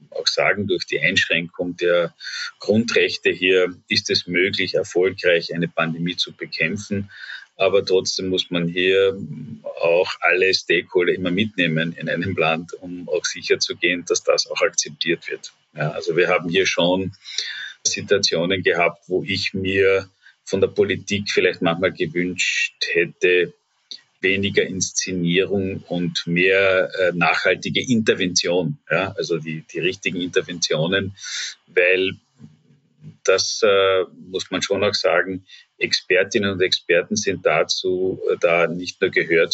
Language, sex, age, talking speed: German, male, 40-59, 125 wpm